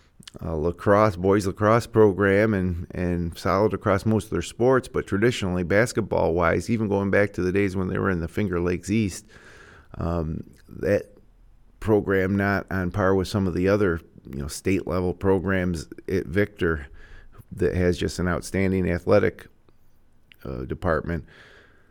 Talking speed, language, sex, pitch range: 155 wpm, English, male, 90-115 Hz